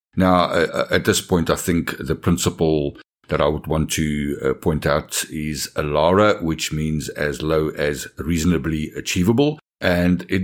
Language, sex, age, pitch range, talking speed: English, male, 60-79, 80-95 Hz, 160 wpm